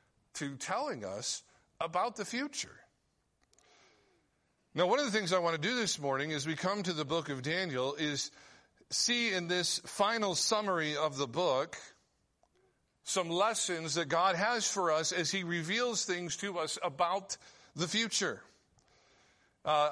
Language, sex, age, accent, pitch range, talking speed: English, male, 50-69, American, 140-185 Hz, 155 wpm